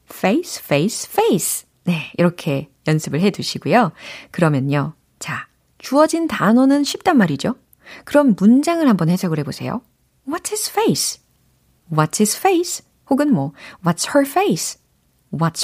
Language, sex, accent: Korean, female, native